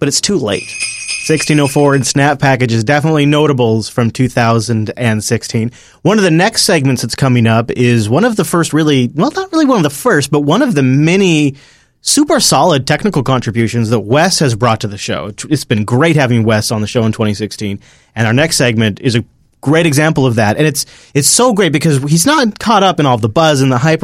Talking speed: 215 wpm